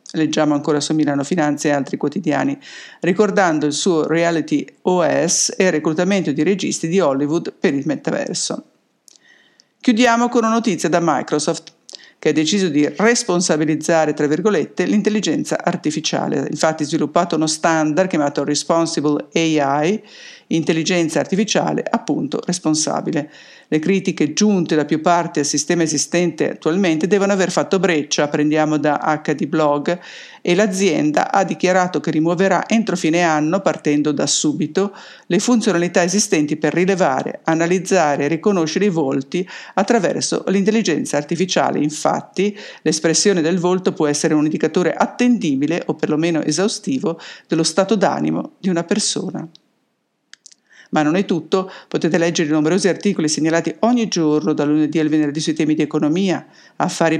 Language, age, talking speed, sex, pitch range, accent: English, 50-69, 135 wpm, female, 155-190 Hz, Italian